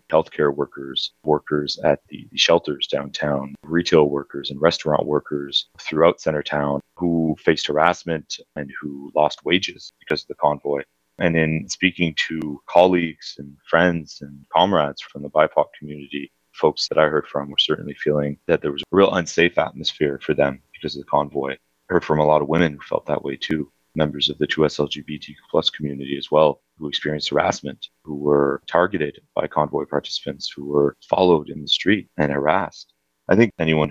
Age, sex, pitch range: 30-49, male, 70-80 Hz